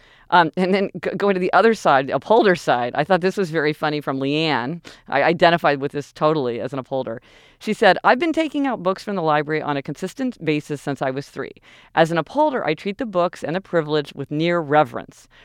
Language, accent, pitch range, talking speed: English, American, 150-200 Hz, 225 wpm